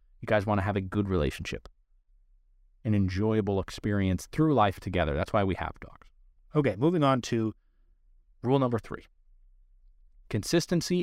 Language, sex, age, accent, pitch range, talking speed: English, male, 30-49, American, 90-135 Hz, 140 wpm